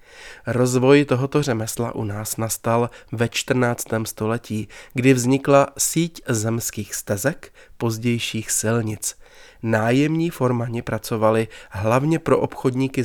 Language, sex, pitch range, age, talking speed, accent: Czech, male, 115-140 Hz, 30-49, 100 wpm, native